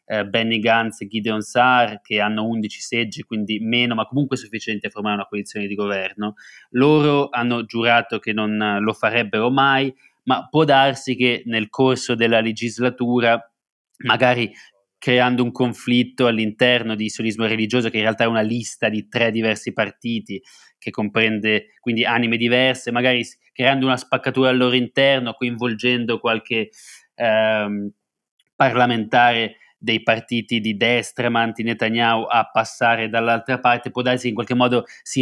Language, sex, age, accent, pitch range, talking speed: Italian, male, 20-39, native, 110-125 Hz, 150 wpm